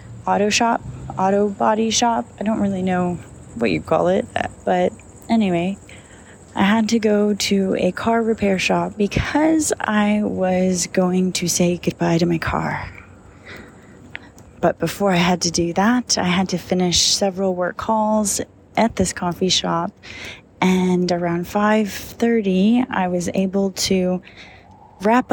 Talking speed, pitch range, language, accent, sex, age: 140 wpm, 165-205 Hz, English, American, female, 20-39